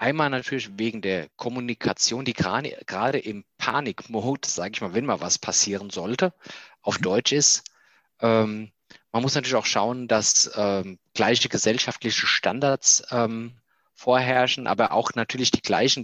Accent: German